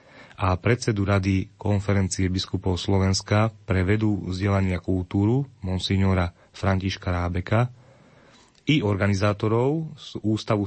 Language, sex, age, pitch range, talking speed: Slovak, male, 30-49, 95-110 Hz, 95 wpm